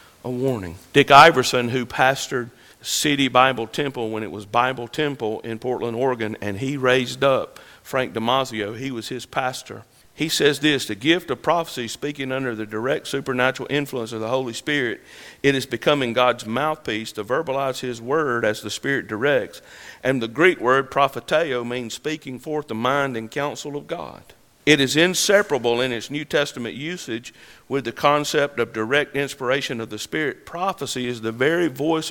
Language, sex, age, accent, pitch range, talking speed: English, male, 50-69, American, 120-145 Hz, 175 wpm